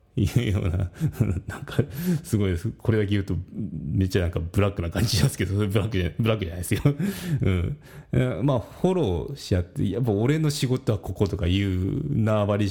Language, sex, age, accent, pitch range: Japanese, male, 40-59, native, 90-125 Hz